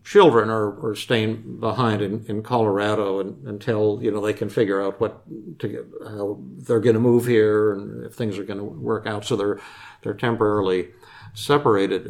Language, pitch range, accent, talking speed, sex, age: English, 105-120 Hz, American, 190 wpm, male, 50-69